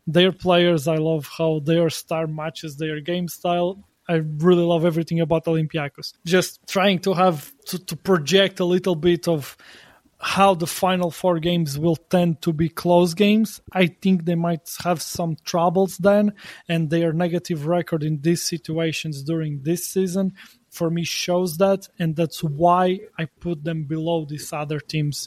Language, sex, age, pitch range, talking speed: English, male, 20-39, 160-180 Hz, 170 wpm